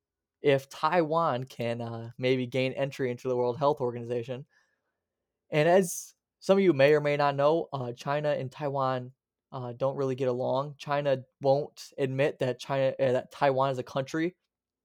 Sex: male